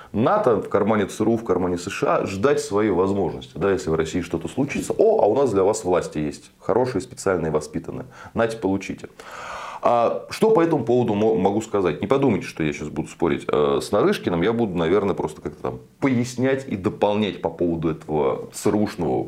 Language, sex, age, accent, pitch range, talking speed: Russian, male, 20-39, native, 90-130 Hz, 180 wpm